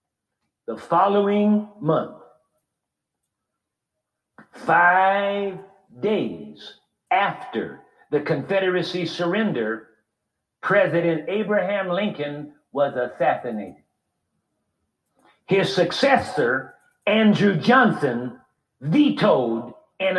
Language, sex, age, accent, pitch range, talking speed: English, male, 60-79, American, 150-205 Hz, 60 wpm